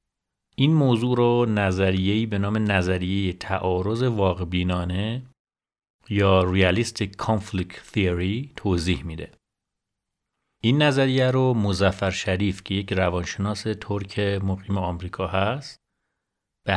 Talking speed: 100 wpm